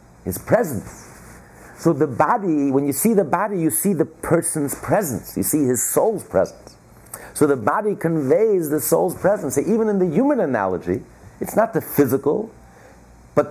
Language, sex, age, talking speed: English, male, 50-69, 170 wpm